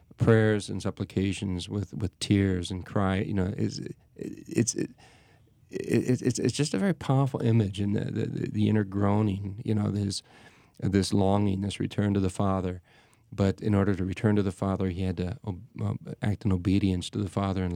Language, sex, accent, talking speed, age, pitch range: English, male, American, 195 wpm, 40-59, 95-115 Hz